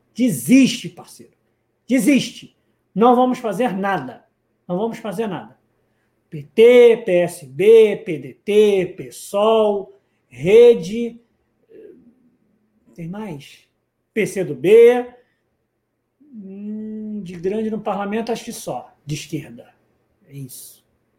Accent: Brazilian